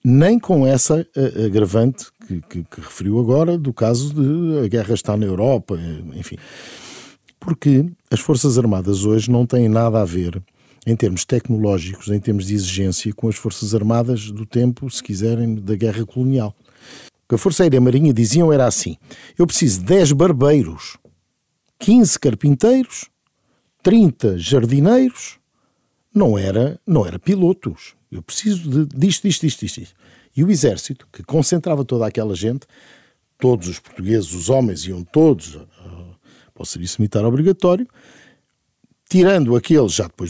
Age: 50-69